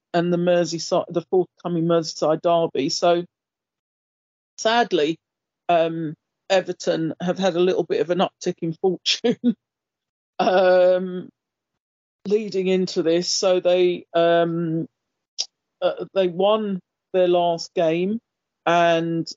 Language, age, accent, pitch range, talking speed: English, 40-59, British, 165-185 Hz, 110 wpm